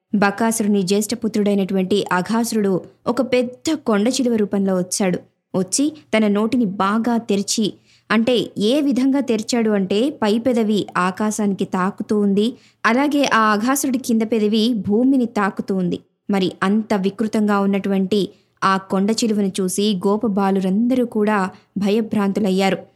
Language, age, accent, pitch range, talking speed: Telugu, 20-39, native, 195-245 Hz, 105 wpm